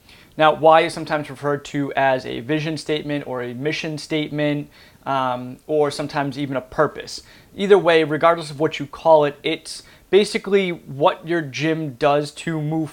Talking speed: 165 wpm